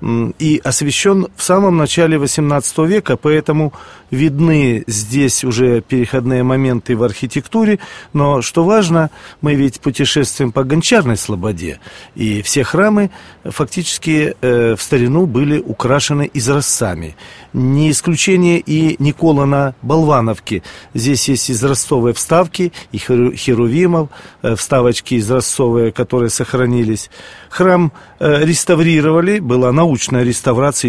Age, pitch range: 40-59, 125-160 Hz